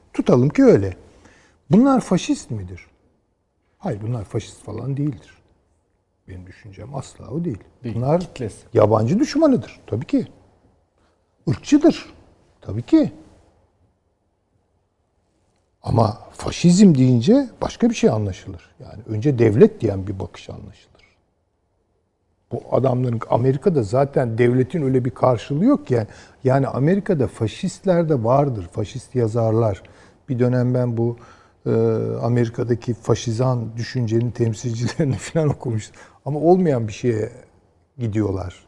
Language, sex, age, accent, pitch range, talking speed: Turkish, male, 60-79, native, 100-145 Hz, 110 wpm